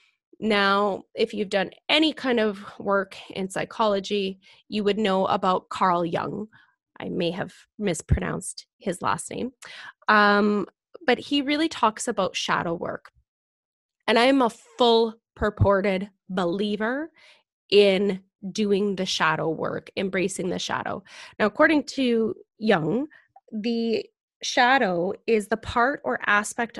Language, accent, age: English, American, 20-39